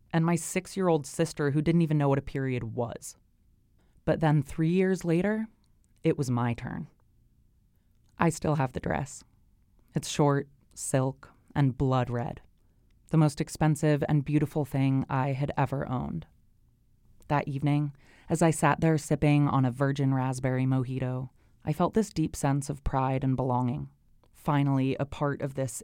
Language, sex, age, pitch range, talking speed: English, female, 20-39, 130-155 Hz, 160 wpm